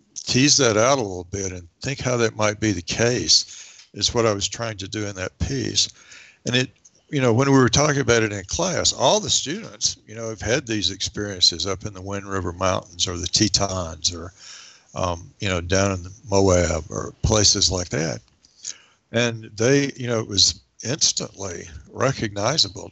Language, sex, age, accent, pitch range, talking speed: English, male, 60-79, American, 95-120 Hz, 195 wpm